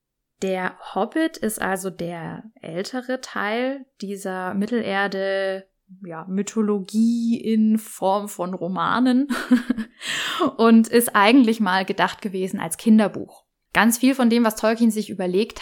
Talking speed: 110 wpm